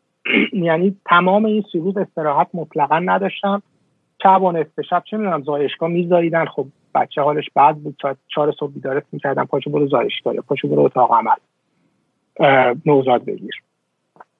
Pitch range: 150-210 Hz